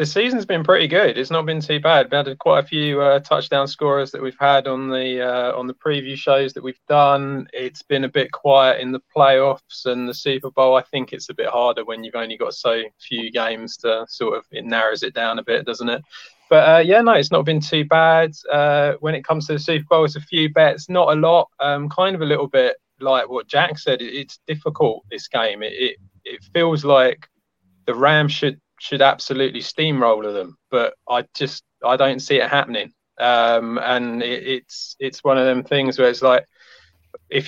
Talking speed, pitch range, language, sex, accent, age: 220 wpm, 130-155 Hz, English, male, British, 20-39